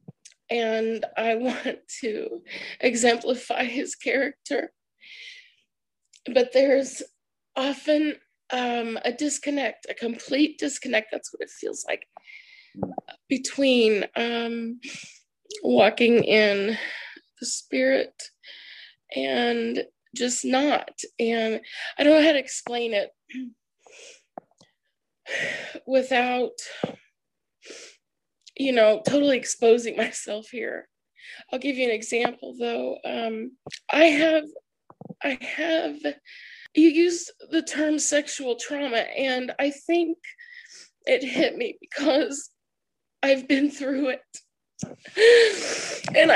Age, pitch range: 20-39, 245-345 Hz